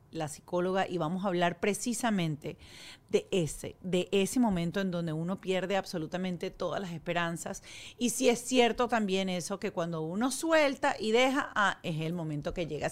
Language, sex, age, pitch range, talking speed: Spanish, female, 40-59, 175-235 Hz, 175 wpm